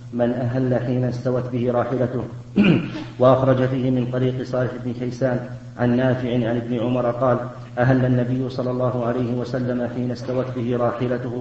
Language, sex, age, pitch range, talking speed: Arabic, male, 40-59, 125-130 Hz, 155 wpm